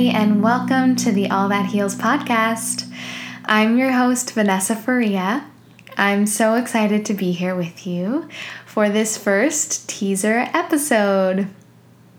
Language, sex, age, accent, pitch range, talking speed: English, female, 10-29, American, 205-255 Hz, 130 wpm